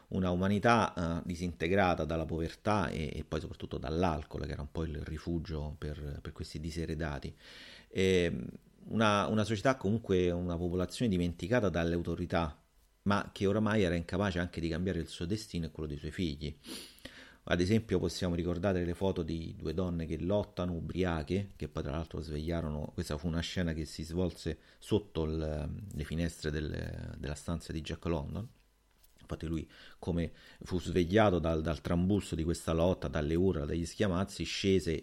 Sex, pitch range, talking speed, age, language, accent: male, 80-95 Hz, 160 wpm, 40-59, Italian, native